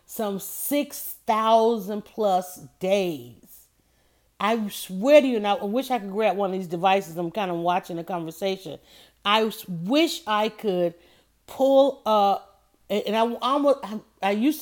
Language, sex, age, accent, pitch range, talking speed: English, female, 40-59, American, 185-250 Hz, 150 wpm